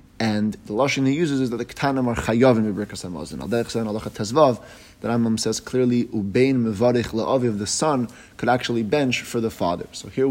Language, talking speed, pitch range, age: English, 190 wpm, 105-125 Hz, 30-49